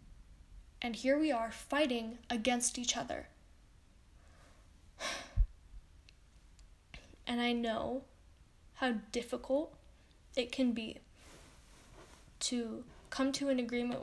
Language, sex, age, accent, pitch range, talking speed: English, female, 10-29, American, 235-270 Hz, 90 wpm